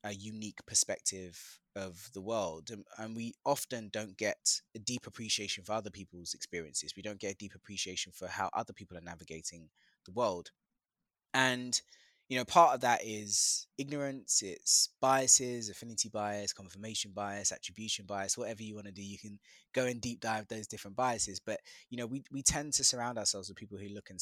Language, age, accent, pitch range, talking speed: English, 20-39, British, 95-115 Hz, 190 wpm